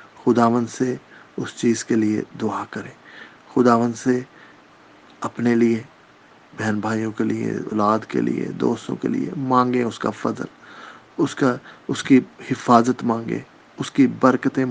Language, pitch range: English, 110-125 Hz